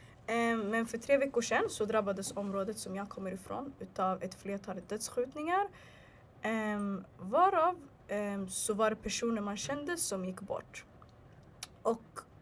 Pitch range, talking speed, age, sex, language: 200-245 Hz, 145 wpm, 20-39, female, Swedish